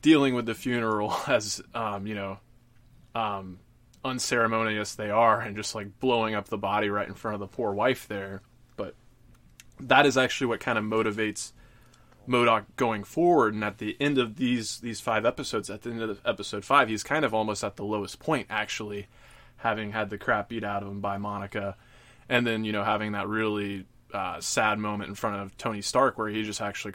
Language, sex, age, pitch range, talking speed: English, male, 20-39, 105-115 Hz, 205 wpm